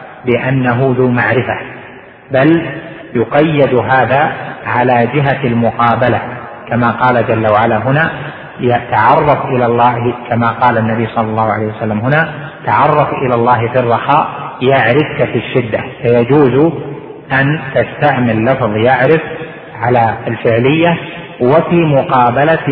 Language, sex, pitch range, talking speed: Arabic, male, 115-140 Hz, 110 wpm